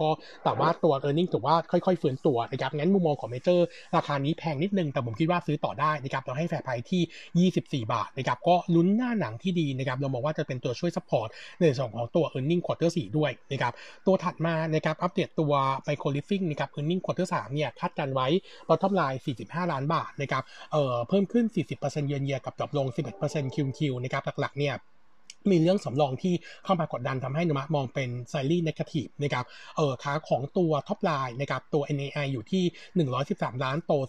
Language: Thai